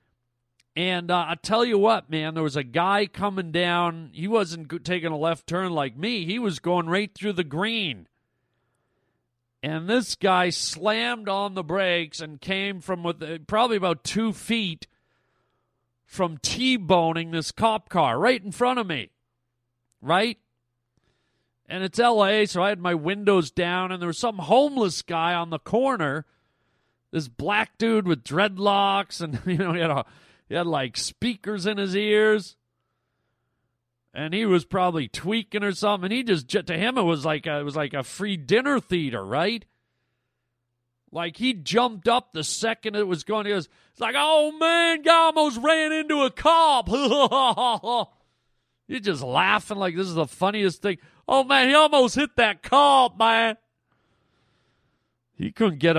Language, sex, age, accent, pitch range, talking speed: English, male, 40-59, American, 150-215 Hz, 165 wpm